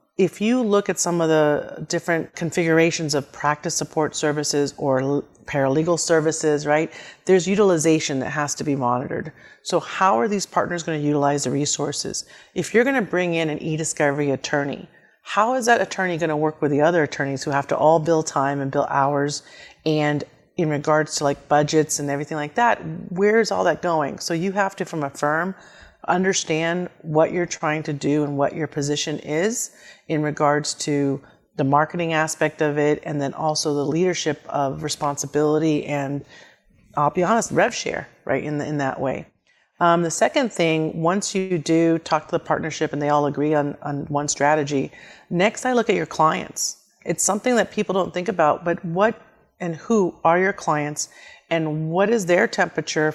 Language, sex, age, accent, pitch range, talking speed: English, female, 40-59, American, 145-175 Hz, 190 wpm